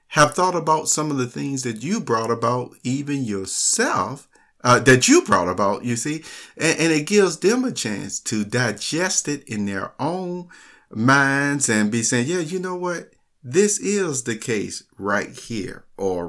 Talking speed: 175 wpm